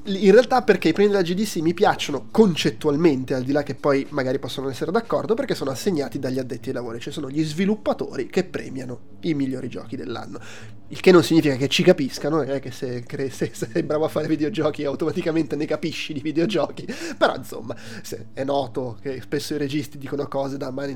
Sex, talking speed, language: male, 205 wpm, Italian